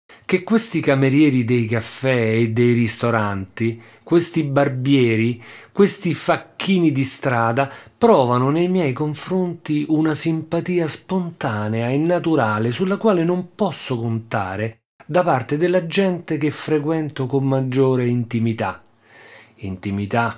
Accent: native